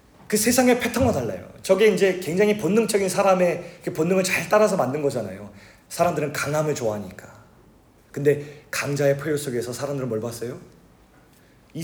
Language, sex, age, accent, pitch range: Korean, male, 40-59, native, 125-160 Hz